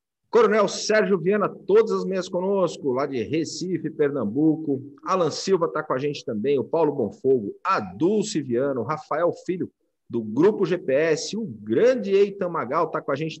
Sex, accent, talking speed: male, Brazilian, 165 wpm